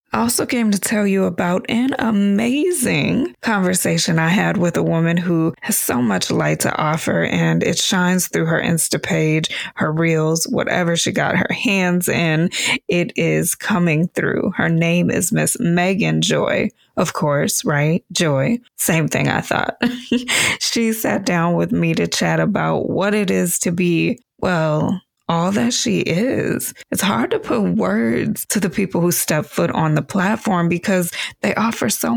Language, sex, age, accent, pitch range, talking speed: English, female, 20-39, American, 165-215 Hz, 170 wpm